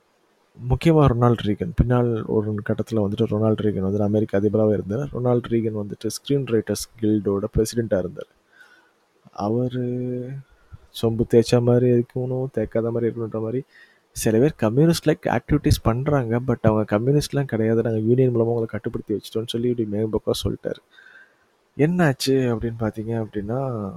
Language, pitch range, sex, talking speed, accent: Tamil, 105-125 Hz, male, 135 wpm, native